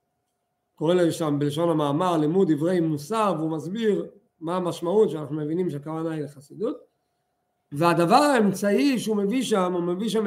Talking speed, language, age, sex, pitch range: 145 wpm, Hebrew, 50-69, male, 180-245 Hz